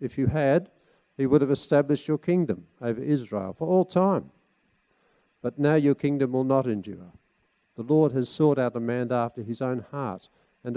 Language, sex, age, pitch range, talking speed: English, male, 50-69, 120-155 Hz, 185 wpm